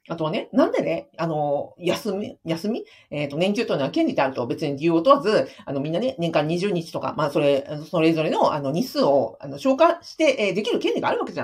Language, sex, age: Japanese, female, 50-69